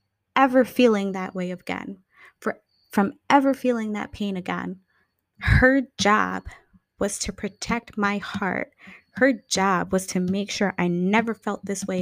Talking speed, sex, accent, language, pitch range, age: 150 wpm, female, American, English, 175-210 Hz, 20-39